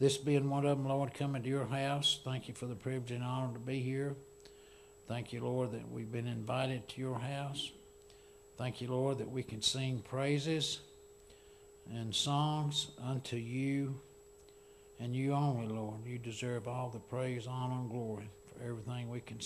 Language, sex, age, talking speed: English, male, 60-79, 180 wpm